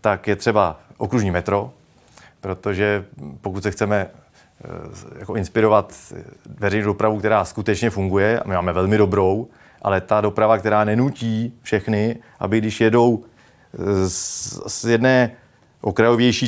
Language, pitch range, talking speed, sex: Czech, 100-115 Hz, 120 wpm, male